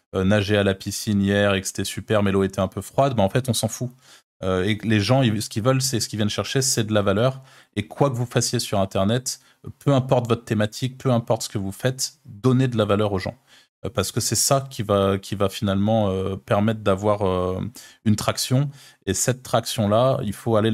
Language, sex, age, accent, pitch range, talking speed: French, male, 20-39, French, 100-120 Hz, 250 wpm